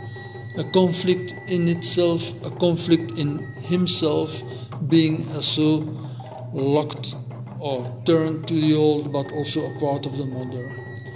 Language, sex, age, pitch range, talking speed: English, male, 50-69, 130-160 Hz, 125 wpm